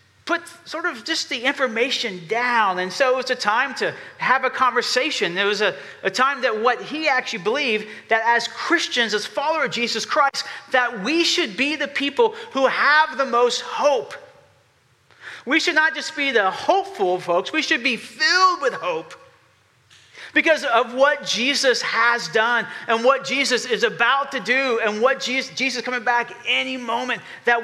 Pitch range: 220-285 Hz